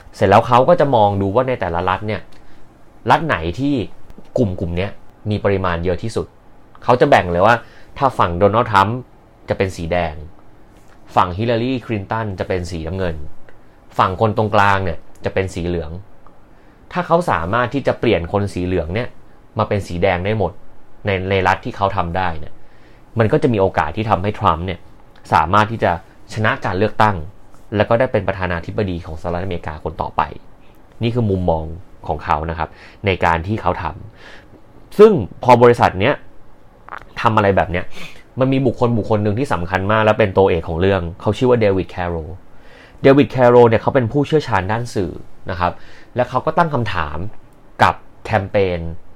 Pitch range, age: 90-120 Hz, 30-49